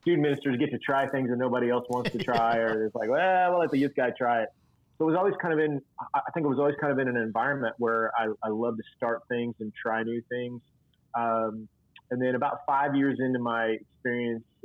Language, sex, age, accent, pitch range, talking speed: English, male, 30-49, American, 115-130 Hz, 245 wpm